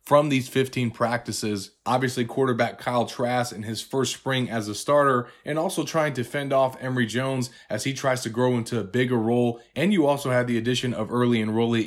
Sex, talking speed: male, 205 wpm